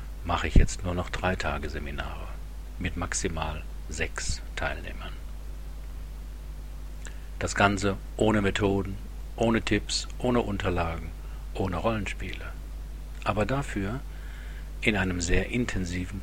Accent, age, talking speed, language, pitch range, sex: German, 50-69, 105 wpm, German, 80-100 Hz, male